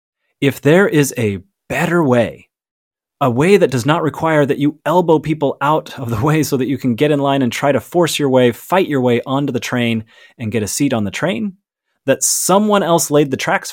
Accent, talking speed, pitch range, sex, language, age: American, 225 wpm, 120-170 Hz, male, English, 30-49